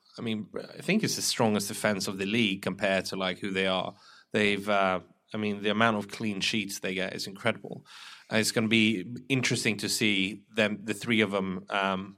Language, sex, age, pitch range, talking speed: English, male, 30-49, 100-120 Hz, 215 wpm